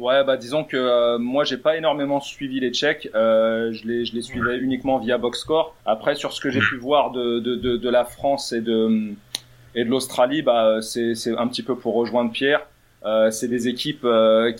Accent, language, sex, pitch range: French, French, male, 120-140 Hz